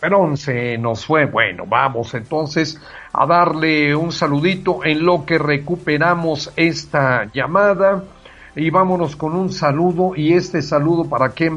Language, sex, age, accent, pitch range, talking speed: English, male, 50-69, Mexican, 145-170 Hz, 140 wpm